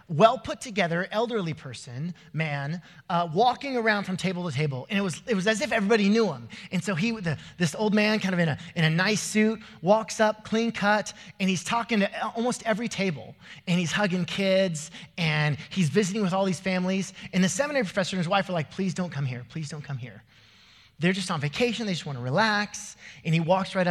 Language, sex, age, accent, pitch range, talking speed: English, male, 30-49, American, 140-205 Hz, 220 wpm